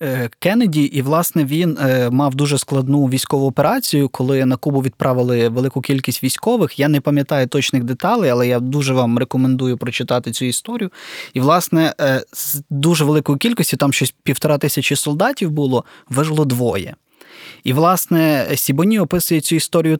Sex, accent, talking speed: male, native, 145 wpm